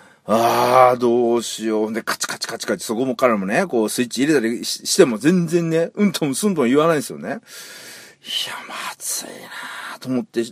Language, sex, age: Japanese, male, 40-59